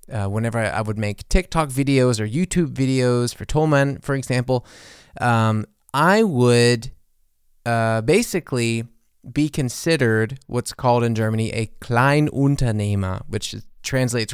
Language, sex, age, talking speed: English, male, 20-39, 125 wpm